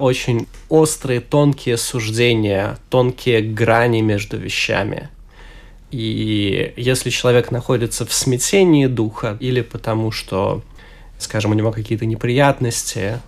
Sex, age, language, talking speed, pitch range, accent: male, 20-39, Russian, 105 wpm, 110-125 Hz, native